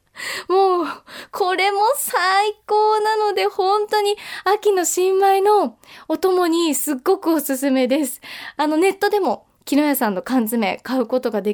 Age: 20-39